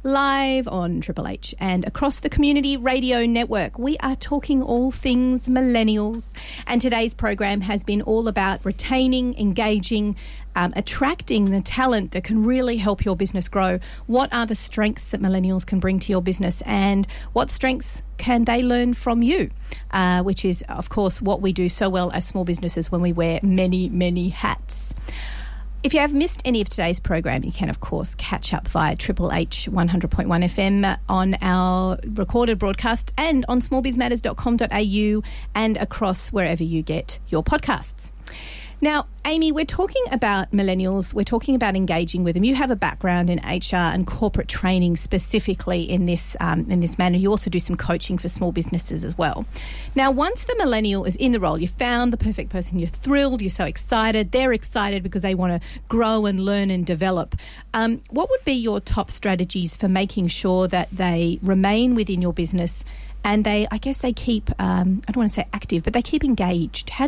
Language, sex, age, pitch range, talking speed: English, female, 40-59, 185-245 Hz, 185 wpm